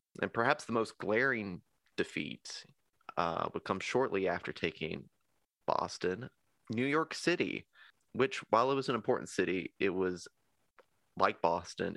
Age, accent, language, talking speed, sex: 30-49, American, English, 135 wpm, male